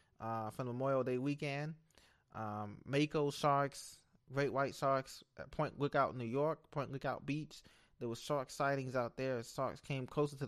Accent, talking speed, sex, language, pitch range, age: American, 165 wpm, male, English, 120-145 Hz, 20-39